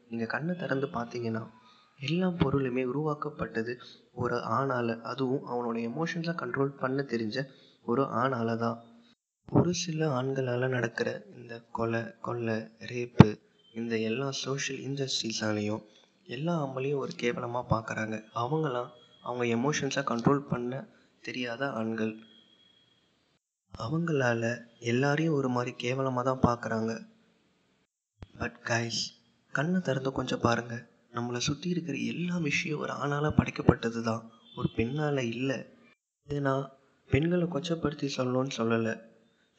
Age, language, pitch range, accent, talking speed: 20-39, Tamil, 115-140 Hz, native, 110 wpm